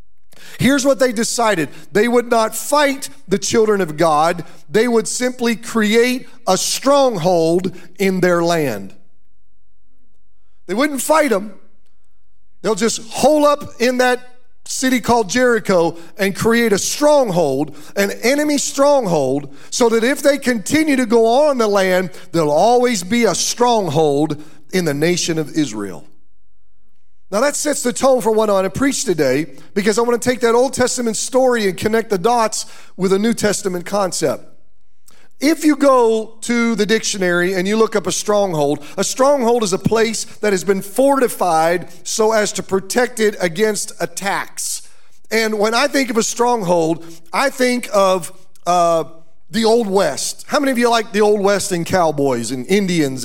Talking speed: 165 wpm